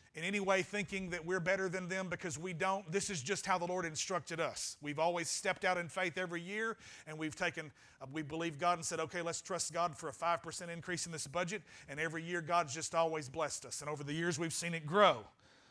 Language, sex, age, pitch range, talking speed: English, male, 40-59, 160-205 Hz, 245 wpm